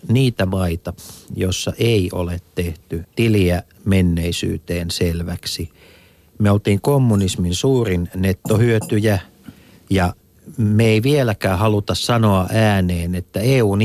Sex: male